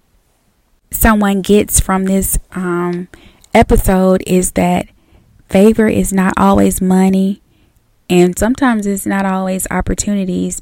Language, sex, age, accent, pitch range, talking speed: English, female, 10-29, American, 180-195 Hz, 105 wpm